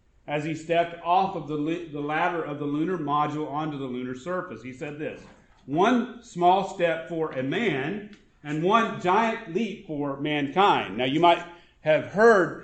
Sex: male